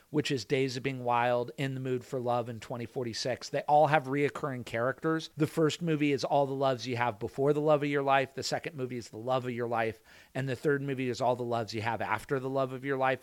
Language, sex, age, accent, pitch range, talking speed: English, male, 40-59, American, 120-150 Hz, 265 wpm